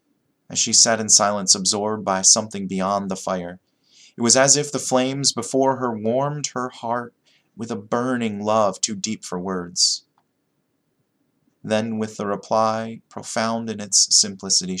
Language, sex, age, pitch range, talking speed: English, male, 30-49, 95-115 Hz, 155 wpm